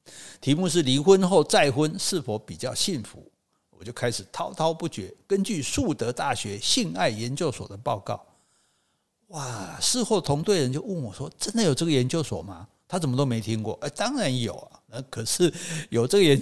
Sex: male